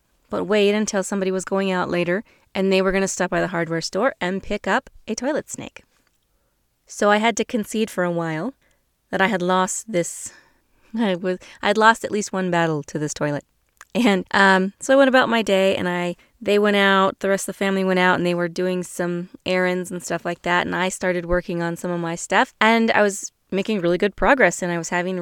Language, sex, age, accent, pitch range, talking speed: English, female, 20-39, American, 175-205 Hz, 230 wpm